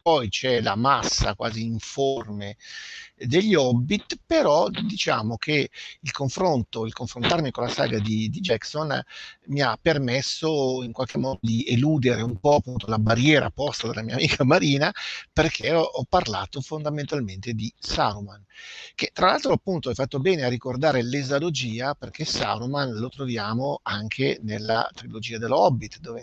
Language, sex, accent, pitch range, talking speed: Italian, male, native, 110-140 Hz, 150 wpm